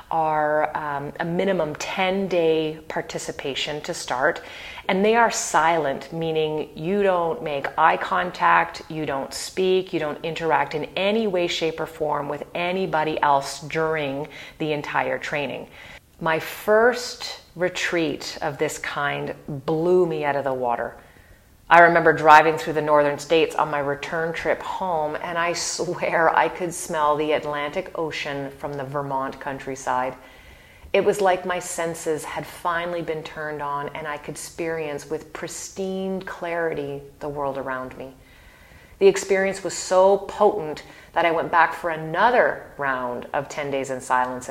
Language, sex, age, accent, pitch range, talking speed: English, female, 30-49, American, 145-175 Hz, 150 wpm